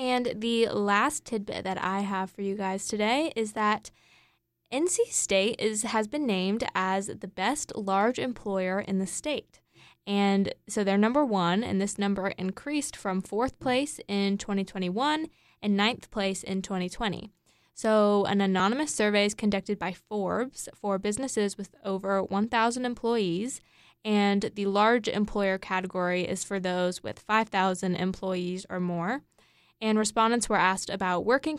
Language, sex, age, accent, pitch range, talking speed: English, female, 10-29, American, 190-225 Hz, 150 wpm